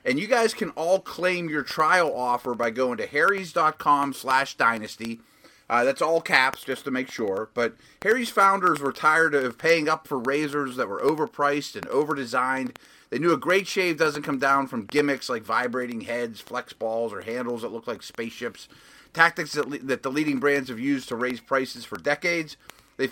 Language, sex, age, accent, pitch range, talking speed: English, male, 30-49, American, 130-170 Hz, 190 wpm